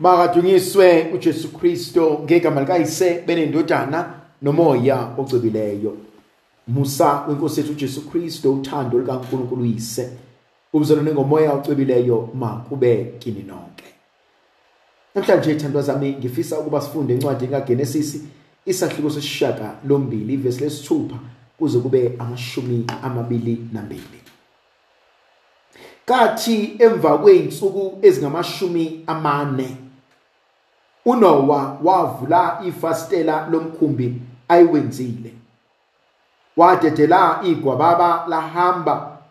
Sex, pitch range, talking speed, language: male, 130-175 Hz, 95 wpm, English